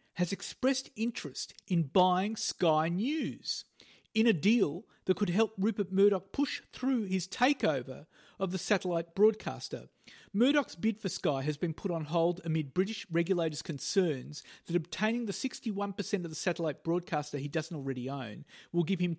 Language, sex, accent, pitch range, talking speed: English, male, Australian, 155-205 Hz, 160 wpm